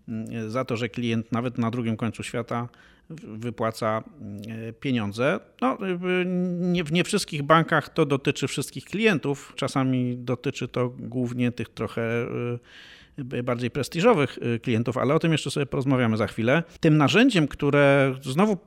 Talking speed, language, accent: 130 wpm, Polish, native